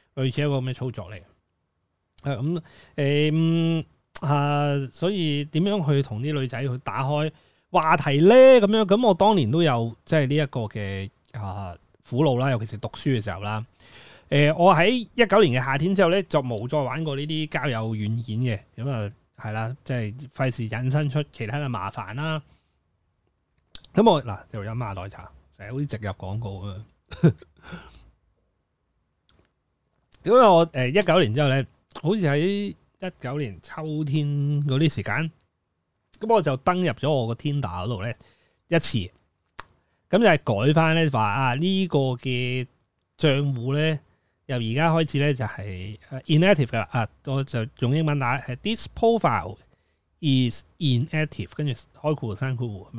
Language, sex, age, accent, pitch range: Chinese, male, 30-49, native, 110-155 Hz